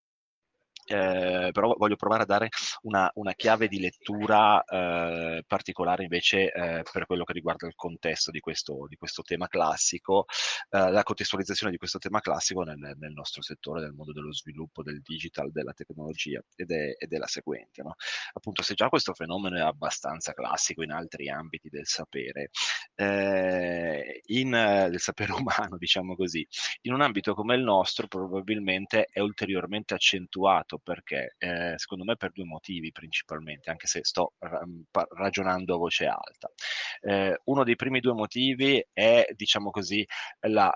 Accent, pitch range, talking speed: native, 85-105 Hz, 160 wpm